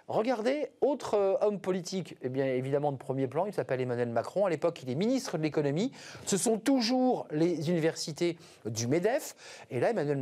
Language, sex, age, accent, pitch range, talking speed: French, male, 40-59, French, 120-185 Hz, 170 wpm